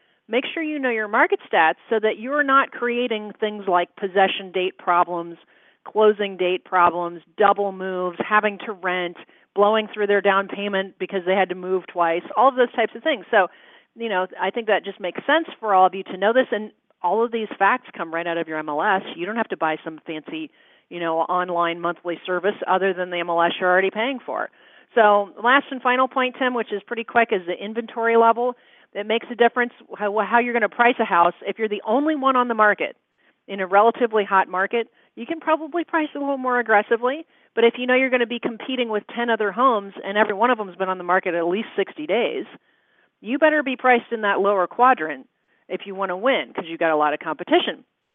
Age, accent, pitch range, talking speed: 40-59, American, 185-245 Hz, 225 wpm